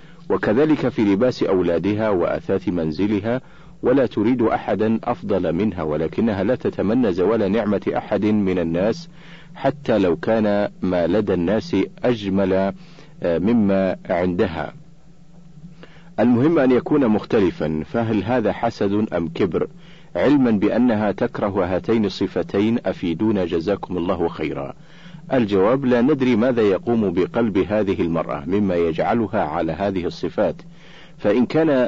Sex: male